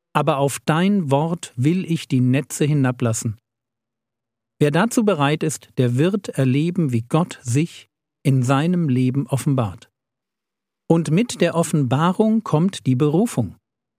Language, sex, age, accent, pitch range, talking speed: German, male, 50-69, German, 135-180 Hz, 130 wpm